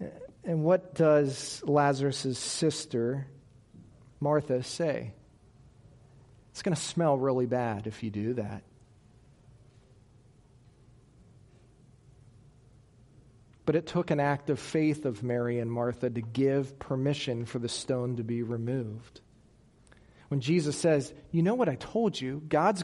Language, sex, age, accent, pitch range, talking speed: English, male, 40-59, American, 120-165 Hz, 125 wpm